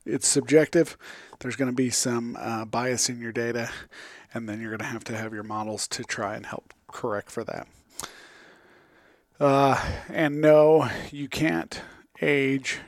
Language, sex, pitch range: English, male, 120-135 Hz